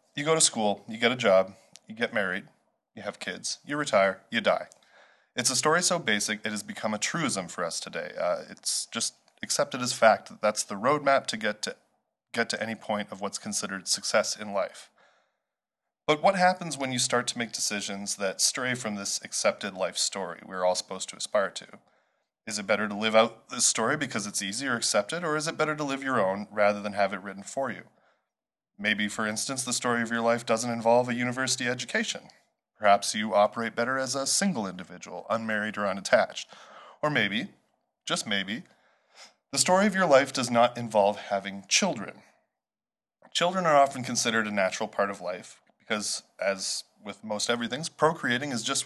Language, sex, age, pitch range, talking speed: English, male, 20-39, 105-140 Hz, 195 wpm